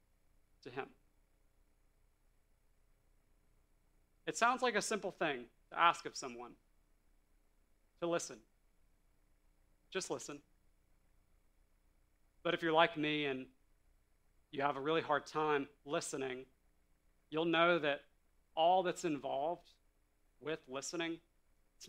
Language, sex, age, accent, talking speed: English, male, 40-59, American, 100 wpm